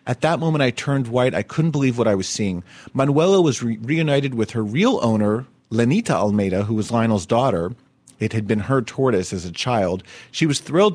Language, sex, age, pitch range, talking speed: English, male, 30-49, 110-150 Hz, 210 wpm